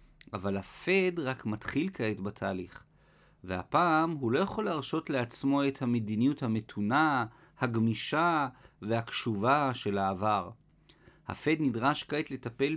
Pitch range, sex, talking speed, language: 115-150 Hz, male, 110 wpm, Hebrew